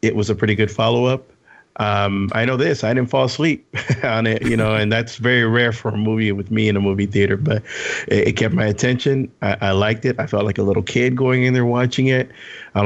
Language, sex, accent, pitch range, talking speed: English, male, American, 110-130 Hz, 250 wpm